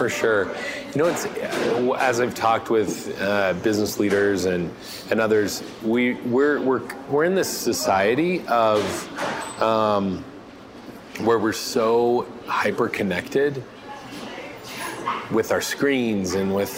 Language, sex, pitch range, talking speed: English, male, 100-120 Hz, 110 wpm